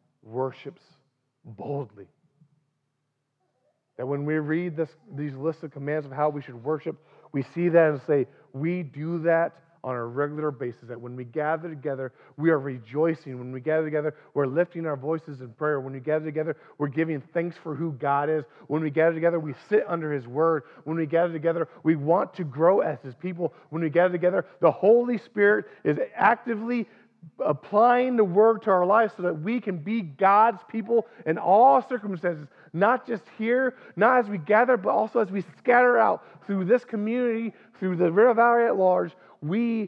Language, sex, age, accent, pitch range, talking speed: English, male, 40-59, American, 130-180 Hz, 190 wpm